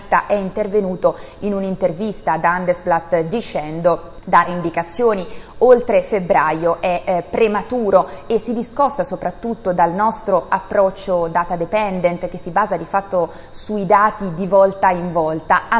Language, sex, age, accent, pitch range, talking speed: Italian, female, 20-39, native, 175-220 Hz, 135 wpm